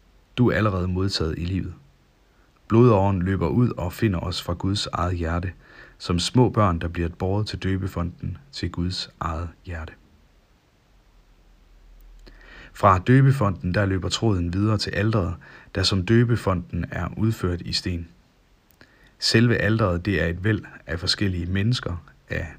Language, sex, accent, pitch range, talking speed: Danish, male, native, 85-110 Hz, 140 wpm